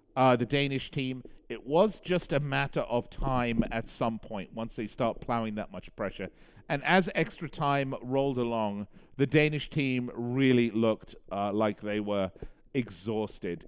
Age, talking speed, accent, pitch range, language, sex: 50-69, 160 wpm, British, 105-135 Hz, English, male